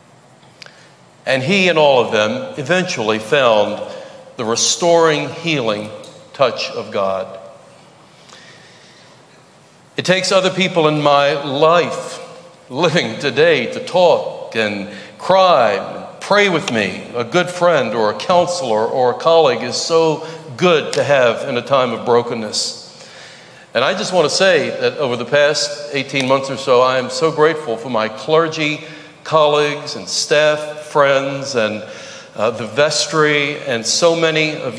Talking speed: 145 wpm